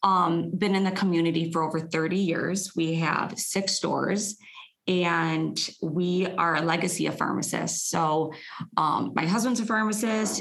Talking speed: 150 wpm